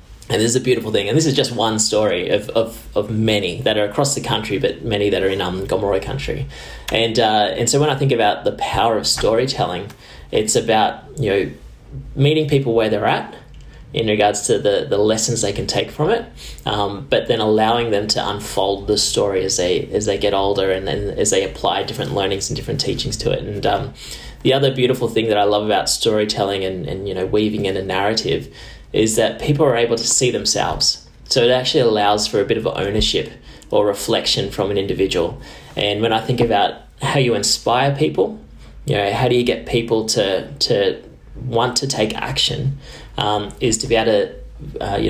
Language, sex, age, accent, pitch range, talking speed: English, male, 10-29, Australian, 100-125 Hz, 210 wpm